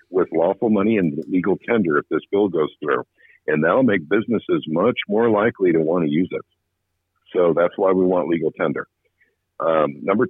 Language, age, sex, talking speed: English, 50-69, male, 185 wpm